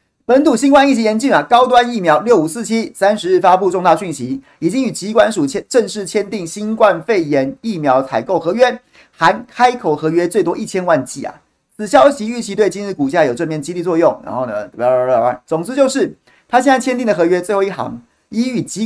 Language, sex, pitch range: Chinese, male, 165-245 Hz